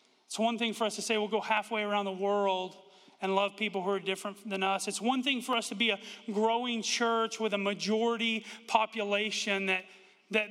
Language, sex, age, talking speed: English, male, 40-59, 210 wpm